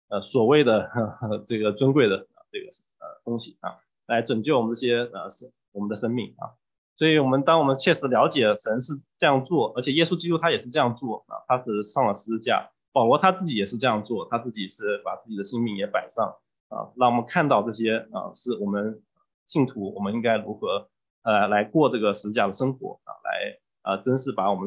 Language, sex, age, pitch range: English, male, 20-39, 105-135 Hz